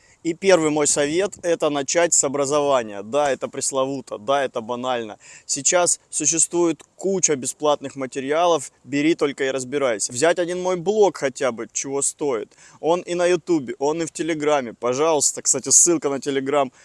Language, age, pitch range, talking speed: Russian, 20-39, 135-175 Hz, 155 wpm